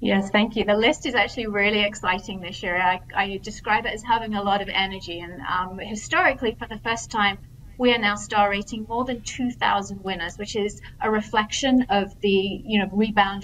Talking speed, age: 210 wpm, 30-49